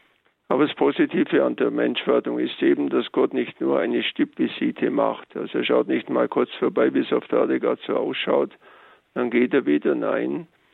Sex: male